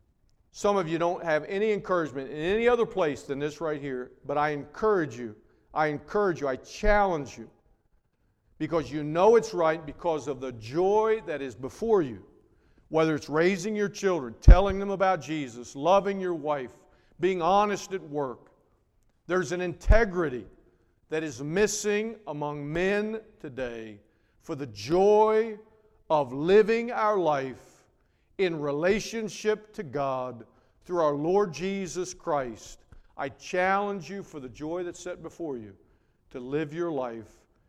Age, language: 50-69, English